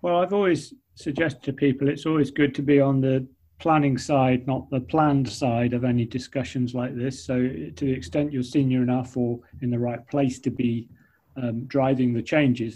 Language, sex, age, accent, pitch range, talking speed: English, male, 30-49, British, 120-140 Hz, 200 wpm